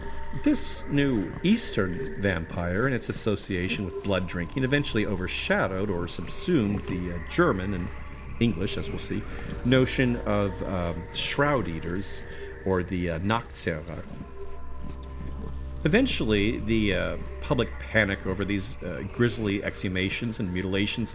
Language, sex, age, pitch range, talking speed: English, male, 40-59, 90-115 Hz, 120 wpm